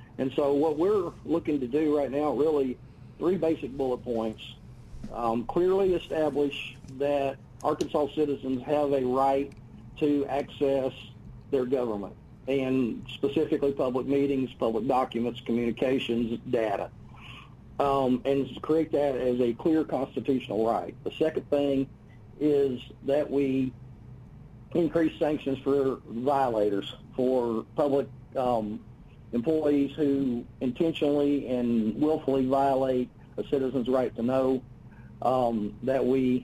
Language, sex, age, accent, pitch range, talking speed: English, male, 50-69, American, 120-145 Hz, 115 wpm